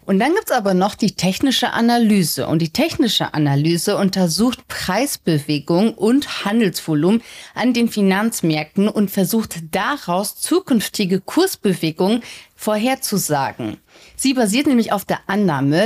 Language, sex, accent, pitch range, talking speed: German, female, German, 175-220 Hz, 120 wpm